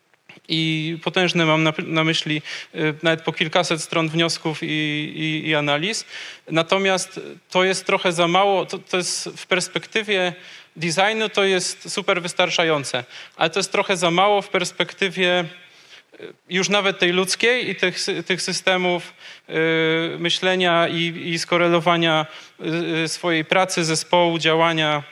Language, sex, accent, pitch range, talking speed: Polish, male, native, 165-190 Hz, 130 wpm